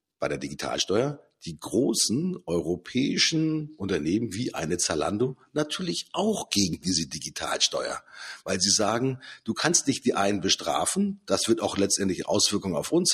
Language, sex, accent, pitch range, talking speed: German, male, German, 105-145 Hz, 140 wpm